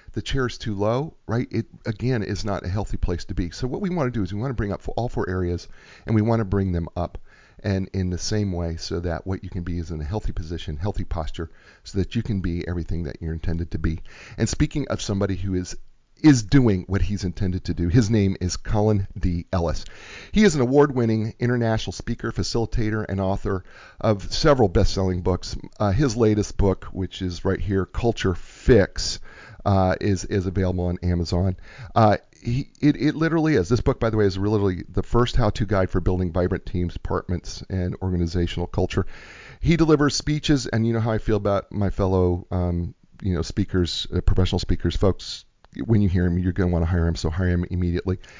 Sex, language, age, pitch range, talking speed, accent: male, English, 40-59, 90-110 Hz, 215 wpm, American